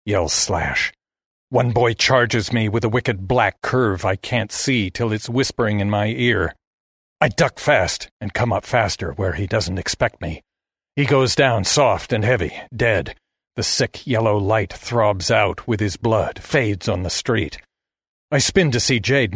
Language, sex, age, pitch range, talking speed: English, male, 50-69, 110-130 Hz, 175 wpm